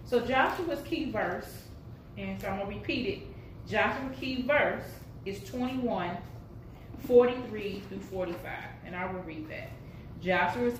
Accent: American